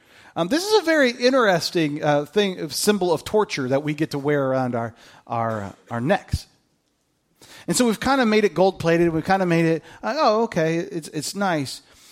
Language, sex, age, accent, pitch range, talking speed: English, male, 40-59, American, 120-205 Hz, 210 wpm